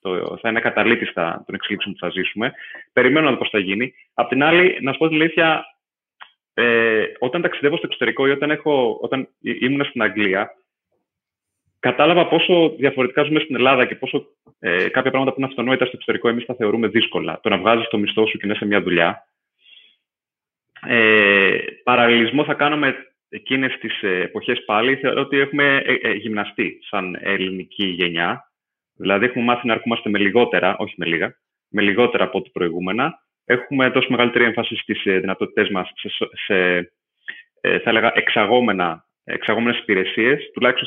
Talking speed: 165 wpm